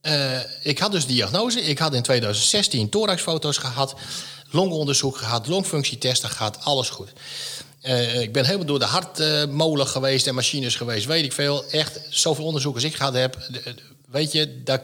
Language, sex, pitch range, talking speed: Dutch, male, 125-160 Hz, 165 wpm